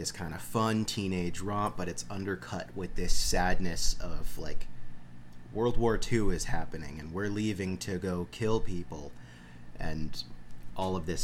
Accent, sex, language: American, male, English